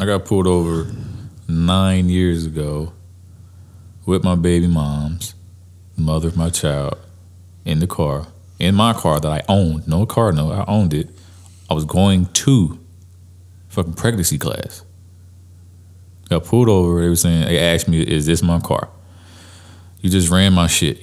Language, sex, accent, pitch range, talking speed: English, male, American, 85-90 Hz, 155 wpm